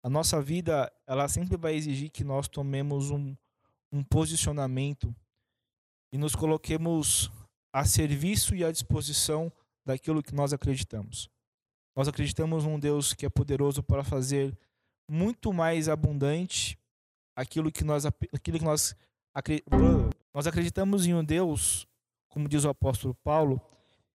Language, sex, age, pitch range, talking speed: Portuguese, male, 20-39, 120-160 Hz, 130 wpm